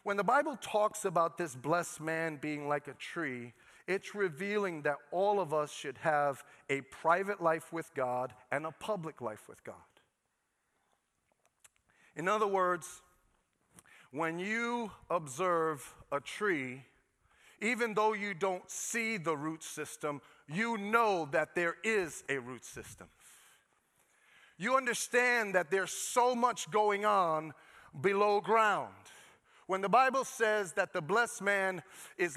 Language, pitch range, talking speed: English, 165-230 Hz, 135 wpm